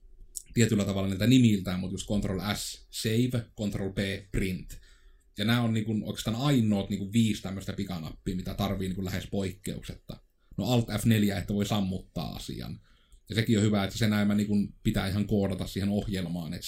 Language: Finnish